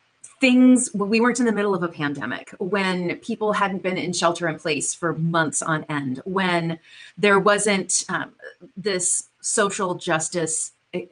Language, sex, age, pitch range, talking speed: English, female, 30-49, 160-200 Hz, 155 wpm